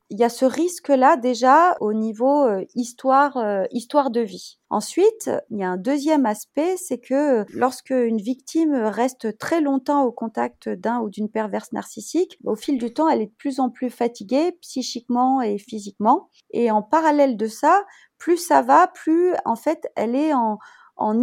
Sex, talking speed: female, 180 wpm